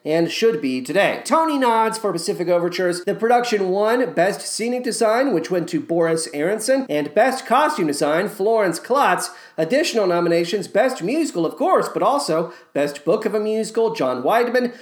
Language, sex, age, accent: English, male, 40-59, American